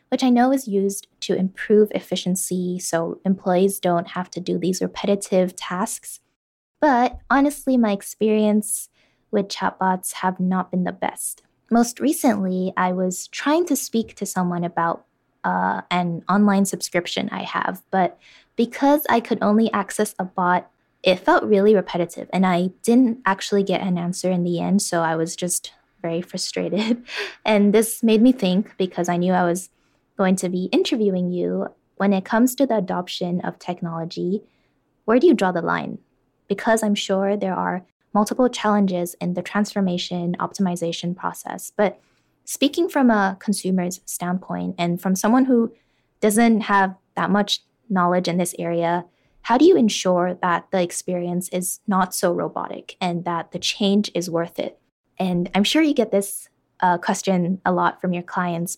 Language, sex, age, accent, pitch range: Chinese, female, 10-29, American, 180-215 Hz